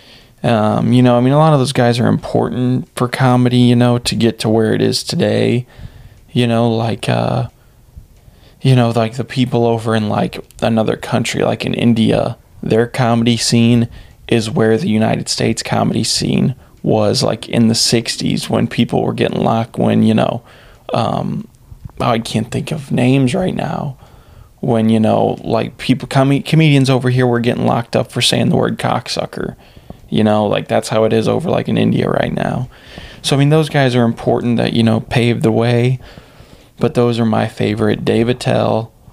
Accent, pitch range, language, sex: American, 110-125 Hz, English, male